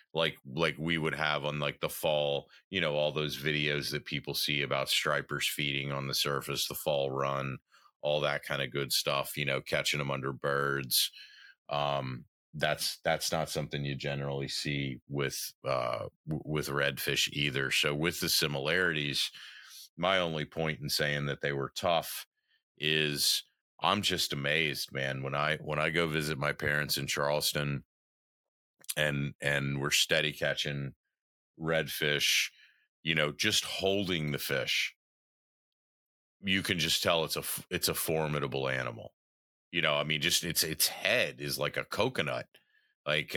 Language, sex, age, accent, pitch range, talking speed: English, male, 30-49, American, 70-80 Hz, 160 wpm